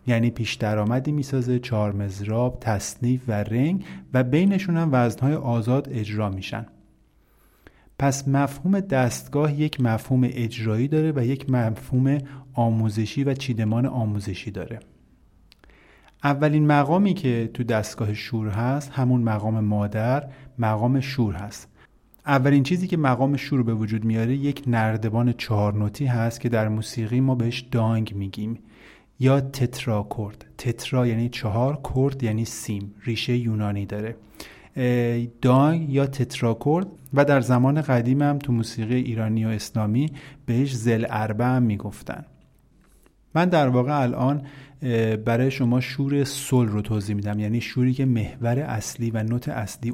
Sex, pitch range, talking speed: male, 110-135 Hz, 130 wpm